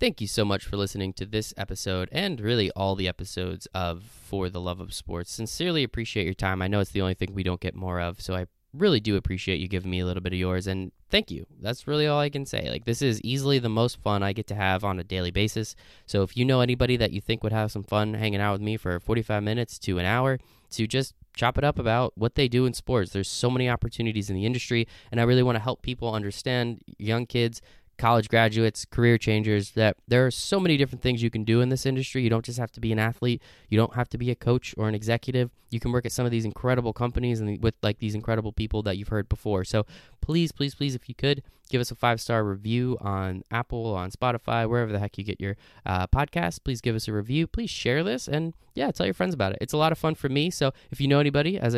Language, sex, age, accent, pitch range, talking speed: English, male, 10-29, American, 100-125 Hz, 265 wpm